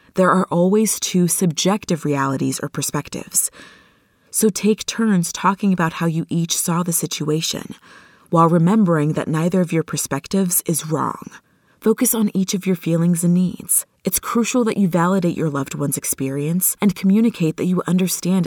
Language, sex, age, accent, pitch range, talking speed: English, female, 30-49, American, 165-205 Hz, 160 wpm